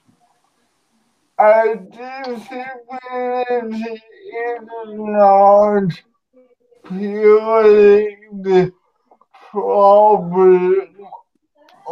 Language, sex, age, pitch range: English, male, 50-69, 190-230 Hz